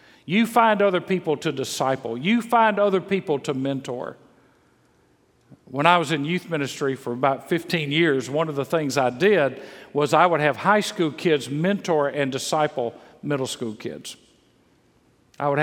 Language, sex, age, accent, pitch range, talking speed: English, male, 50-69, American, 140-180 Hz, 165 wpm